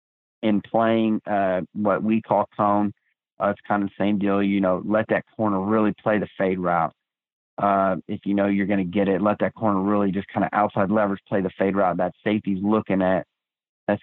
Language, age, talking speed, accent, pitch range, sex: English, 30-49, 220 wpm, American, 95-110 Hz, male